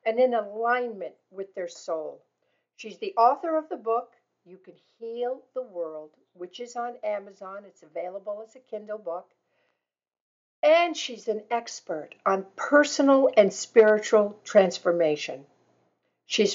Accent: American